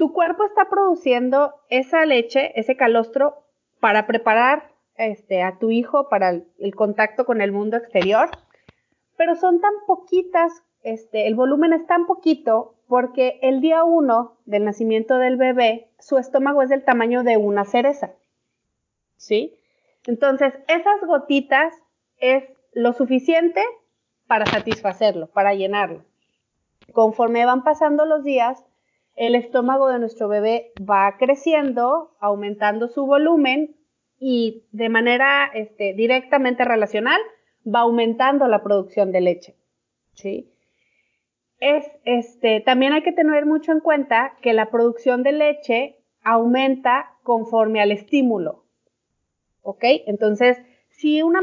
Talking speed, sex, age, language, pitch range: 125 wpm, female, 30-49, Spanish, 225-290 Hz